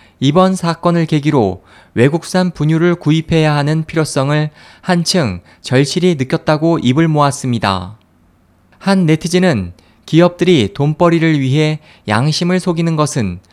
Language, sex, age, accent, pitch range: Korean, male, 20-39, native, 115-170 Hz